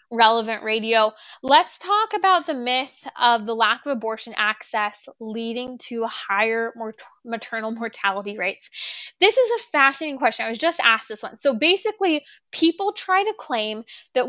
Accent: American